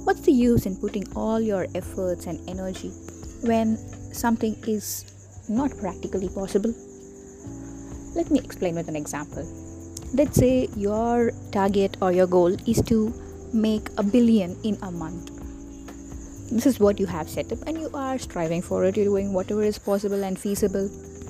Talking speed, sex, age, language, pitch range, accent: 160 wpm, female, 20-39, English, 180-225 Hz, Indian